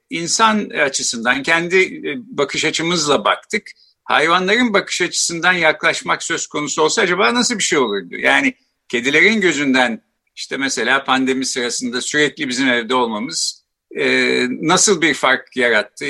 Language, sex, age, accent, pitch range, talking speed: Turkish, male, 60-79, native, 135-215 Hz, 125 wpm